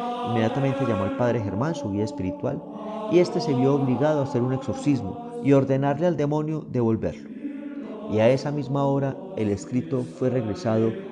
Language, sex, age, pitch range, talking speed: Spanish, male, 30-49, 110-150 Hz, 165 wpm